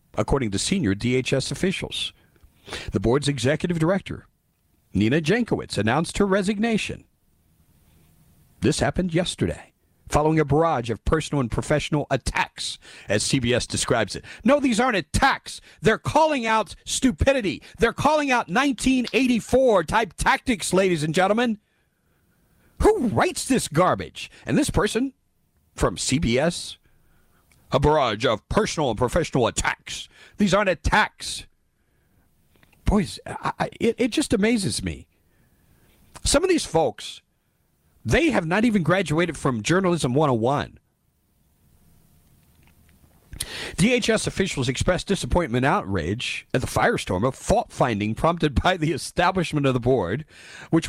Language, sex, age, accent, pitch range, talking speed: English, male, 50-69, American, 135-215 Hz, 120 wpm